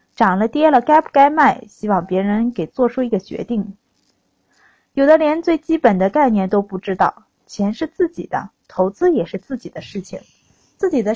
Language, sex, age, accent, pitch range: Chinese, female, 20-39, native, 195-280 Hz